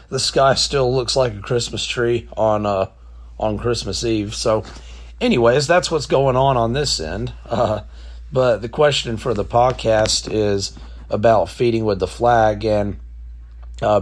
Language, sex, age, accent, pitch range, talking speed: English, male, 30-49, American, 95-115 Hz, 160 wpm